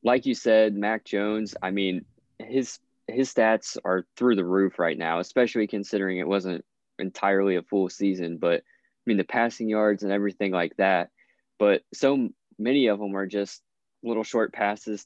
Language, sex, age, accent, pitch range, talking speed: English, male, 20-39, American, 95-115 Hz, 175 wpm